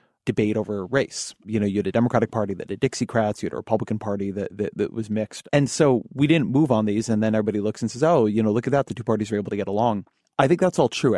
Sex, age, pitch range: male, 30-49, 105-130 Hz